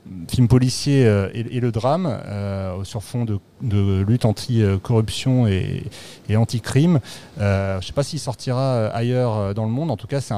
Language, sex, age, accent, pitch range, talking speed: French, male, 30-49, French, 110-140 Hz, 175 wpm